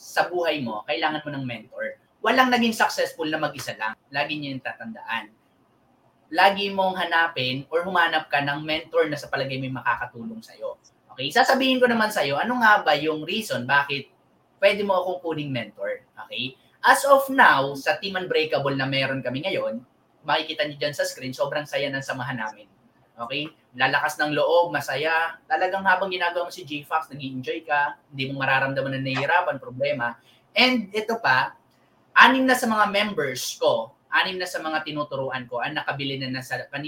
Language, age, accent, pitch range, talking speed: English, 20-39, Filipino, 135-195 Hz, 170 wpm